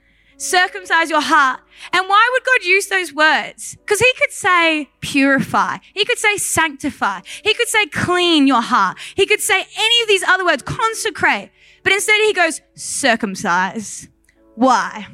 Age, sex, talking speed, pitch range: 20-39, female, 160 wpm, 310-395 Hz